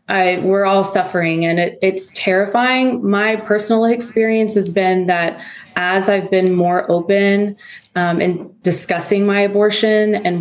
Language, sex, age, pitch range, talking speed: English, female, 20-39, 170-200 Hz, 145 wpm